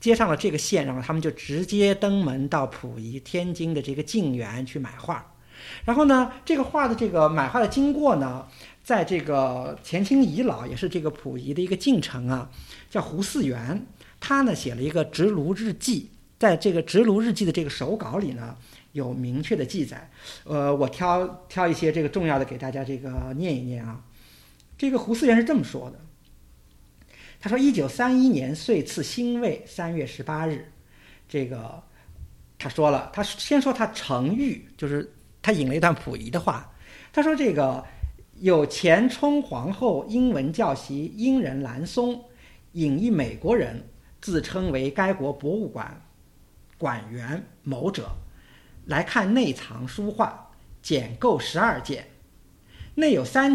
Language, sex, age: Chinese, male, 50-69